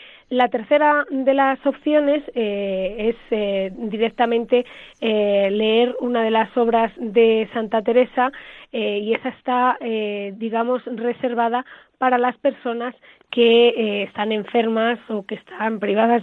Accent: Spanish